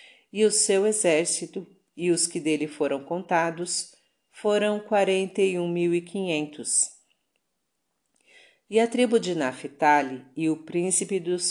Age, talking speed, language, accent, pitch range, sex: 40-59, 135 wpm, Portuguese, Brazilian, 155-195 Hz, female